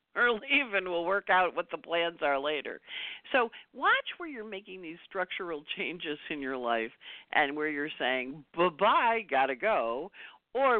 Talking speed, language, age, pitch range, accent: 180 wpm, English, 50-69, 150-225 Hz, American